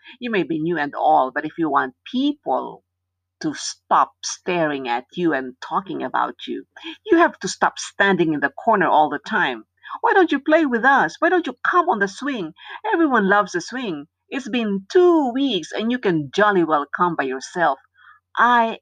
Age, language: 50-69, Filipino